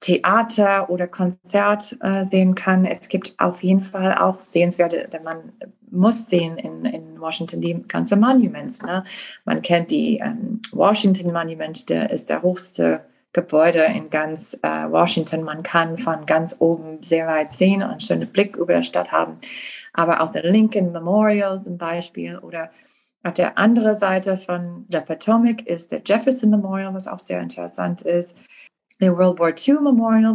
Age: 30-49